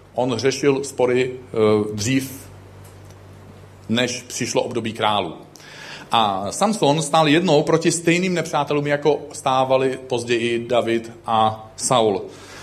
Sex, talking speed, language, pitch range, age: male, 100 wpm, Czech, 125-165 Hz, 40-59